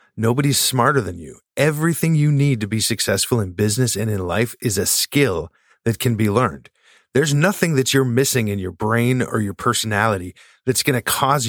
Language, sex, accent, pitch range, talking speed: English, male, American, 105-135 Hz, 195 wpm